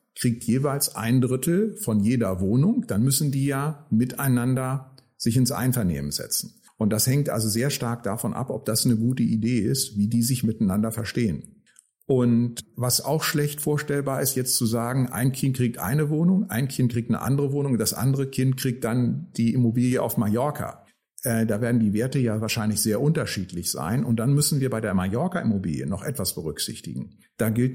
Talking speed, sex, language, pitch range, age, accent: 185 wpm, male, German, 110-140 Hz, 50-69, German